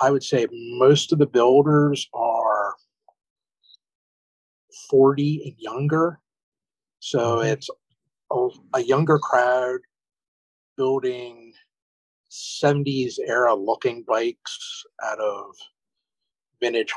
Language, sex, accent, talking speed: English, male, American, 90 wpm